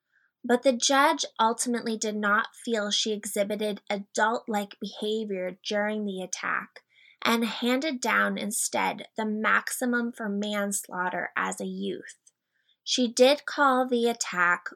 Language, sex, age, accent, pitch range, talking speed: English, female, 20-39, American, 200-245 Hz, 120 wpm